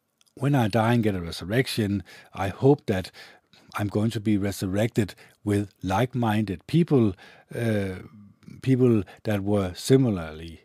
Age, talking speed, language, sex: 50-69, 130 wpm, English, male